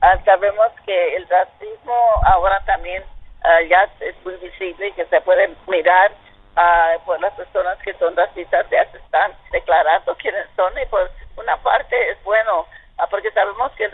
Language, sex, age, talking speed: Spanish, female, 50-69, 175 wpm